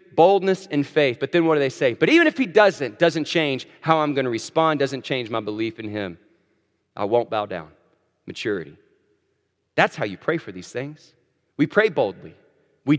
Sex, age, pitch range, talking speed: male, 40-59, 135-185 Hz, 200 wpm